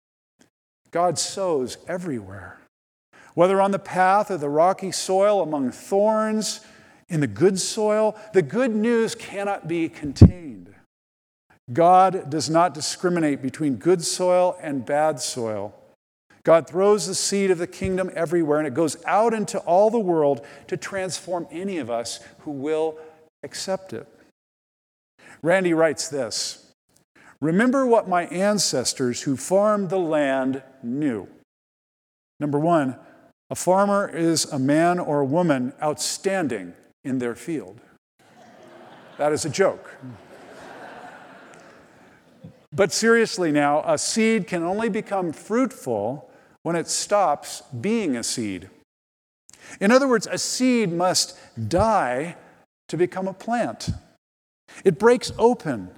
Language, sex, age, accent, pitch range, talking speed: English, male, 50-69, American, 150-200 Hz, 125 wpm